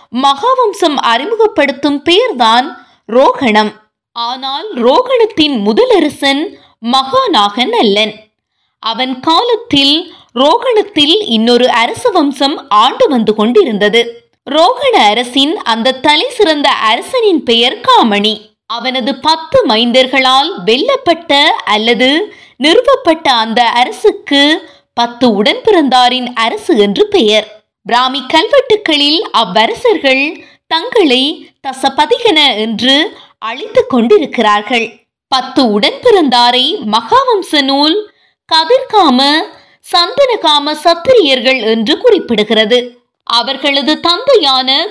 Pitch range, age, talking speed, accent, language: 240-380 Hz, 20-39, 75 wpm, native, Tamil